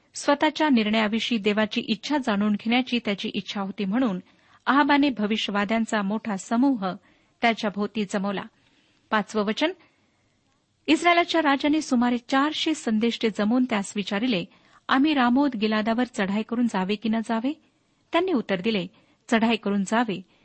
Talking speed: 120 wpm